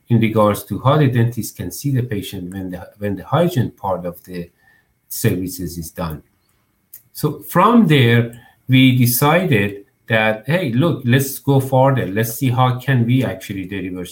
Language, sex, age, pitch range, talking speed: English, male, 50-69, 105-130 Hz, 165 wpm